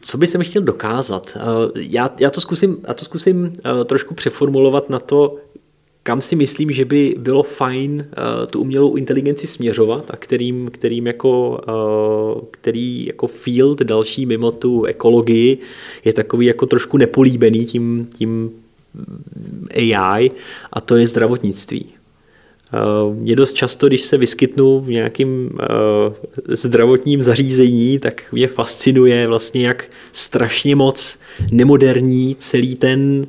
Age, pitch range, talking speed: 20-39, 115-130 Hz, 125 wpm